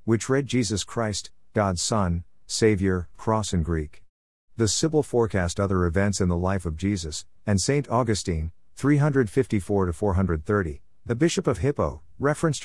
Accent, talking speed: American, 140 wpm